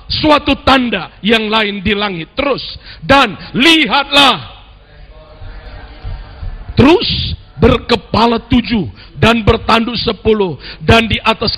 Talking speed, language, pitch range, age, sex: 95 wpm, Indonesian, 210-275 Hz, 50-69, male